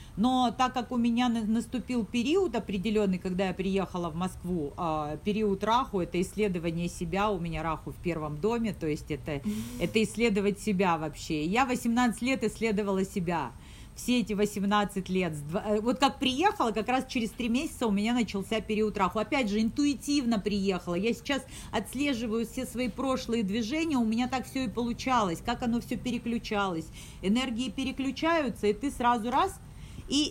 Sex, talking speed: female, 160 wpm